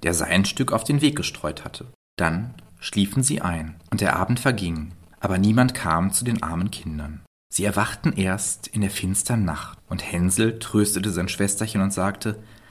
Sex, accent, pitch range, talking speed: male, German, 95-125 Hz, 175 wpm